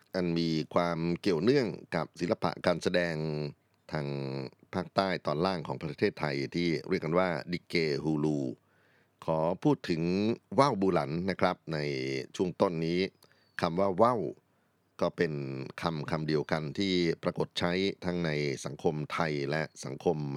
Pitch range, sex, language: 75-85 Hz, male, Thai